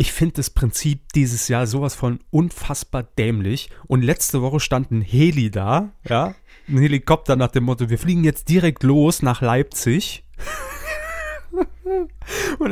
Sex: male